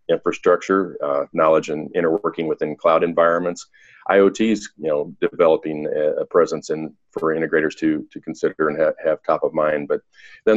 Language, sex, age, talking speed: English, male, 40-59, 155 wpm